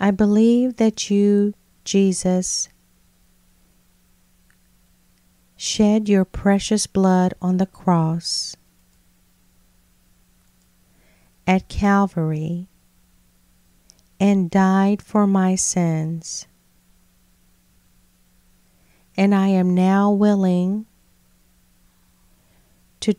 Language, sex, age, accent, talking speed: English, female, 40-59, American, 65 wpm